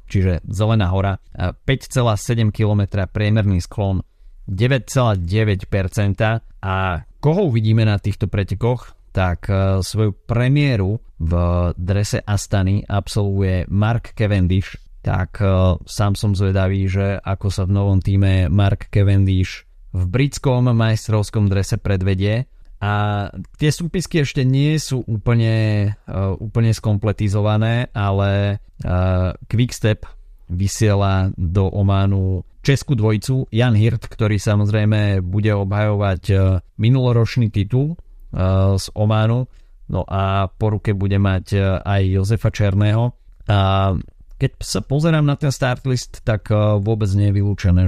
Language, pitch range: Slovak, 95-110 Hz